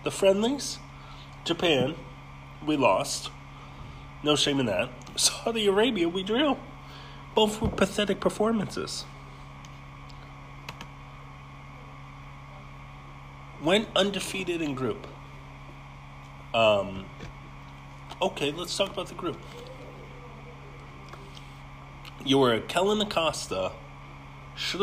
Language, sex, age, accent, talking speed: English, male, 40-59, American, 80 wpm